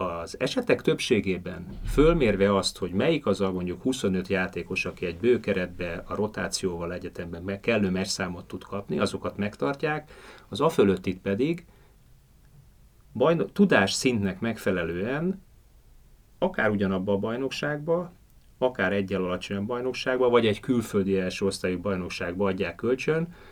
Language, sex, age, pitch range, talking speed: Hungarian, male, 30-49, 95-115 Hz, 120 wpm